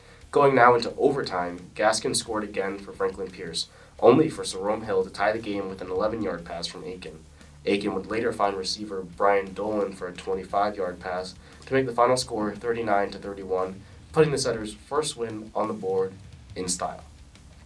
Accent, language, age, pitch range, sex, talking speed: American, English, 20-39, 90-115 Hz, male, 175 wpm